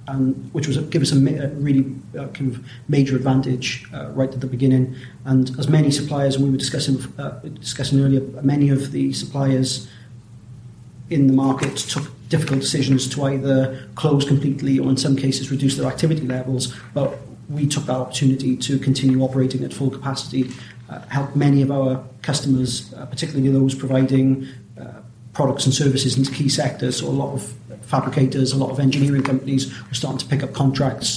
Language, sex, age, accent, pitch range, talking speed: English, male, 40-59, British, 130-140 Hz, 180 wpm